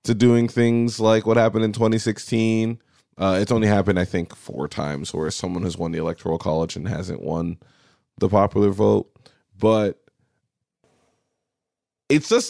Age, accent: 20-39, American